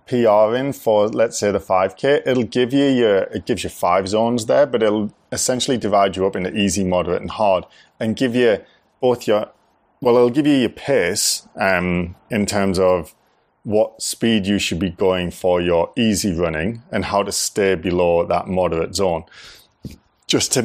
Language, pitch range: English, 90-115 Hz